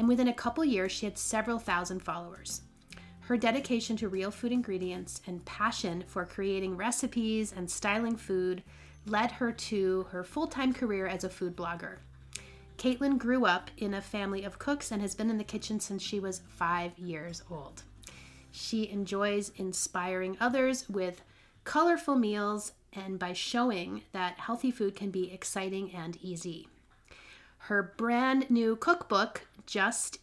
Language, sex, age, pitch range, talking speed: English, female, 30-49, 180-225 Hz, 155 wpm